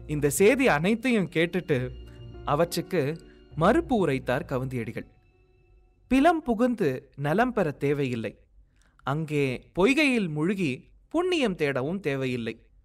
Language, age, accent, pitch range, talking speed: Tamil, 30-49, native, 130-205 Hz, 90 wpm